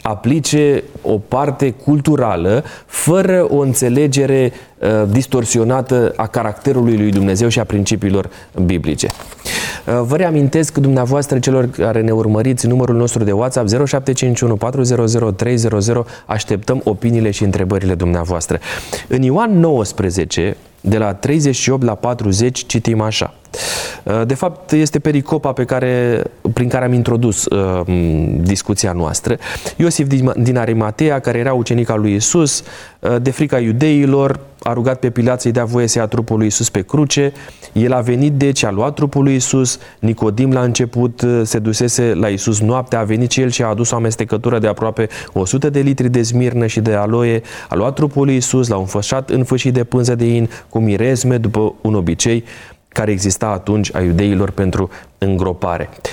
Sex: male